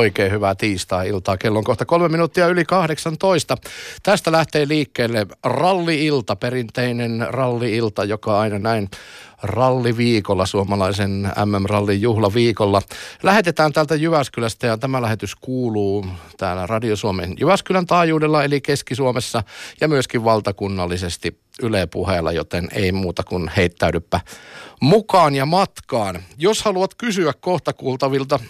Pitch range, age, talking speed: 100-145 Hz, 50-69, 120 wpm